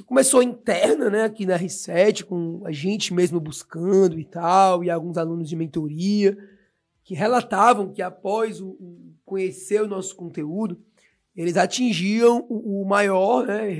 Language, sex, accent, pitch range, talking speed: Portuguese, male, Brazilian, 190-235 Hz, 150 wpm